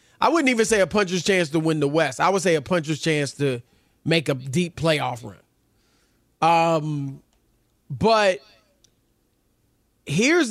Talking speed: 150 wpm